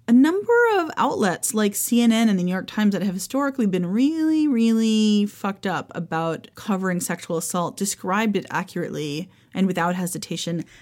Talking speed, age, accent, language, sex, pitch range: 160 wpm, 30-49, American, English, female, 175-230 Hz